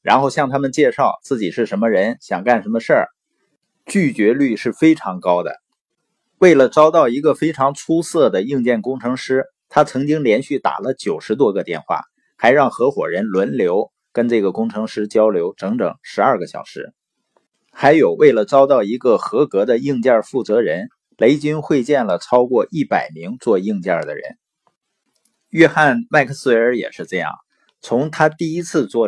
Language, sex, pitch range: Chinese, male, 120-185 Hz